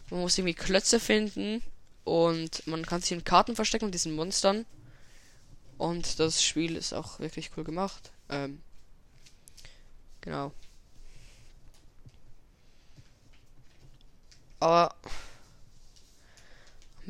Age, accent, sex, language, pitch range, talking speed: 10-29, German, female, German, 150-180 Hz, 95 wpm